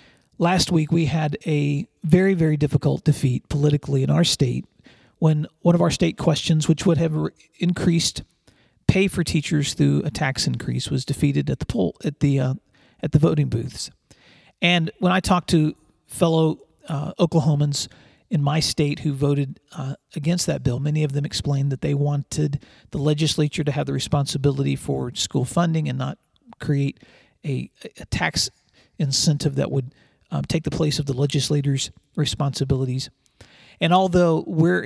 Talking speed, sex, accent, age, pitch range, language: 160 wpm, male, American, 40-59, 140-165 Hz, English